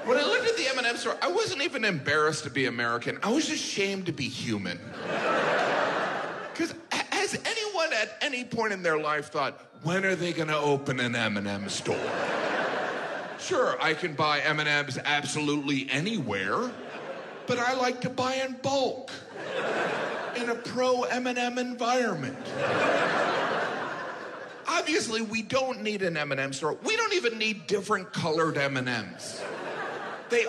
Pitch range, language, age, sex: 165-260 Hz, Chinese, 40-59, male